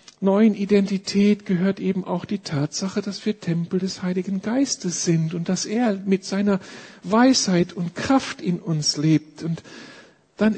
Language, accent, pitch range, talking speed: German, German, 170-215 Hz, 155 wpm